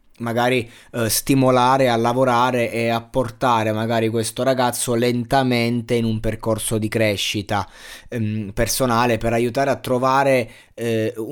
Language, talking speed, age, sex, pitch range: Italian, 125 wpm, 20-39, male, 110-125 Hz